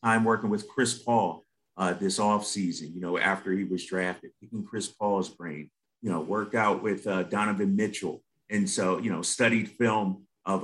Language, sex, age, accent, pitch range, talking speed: English, male, 30-49, American, 100-150 Hz, 190 wpm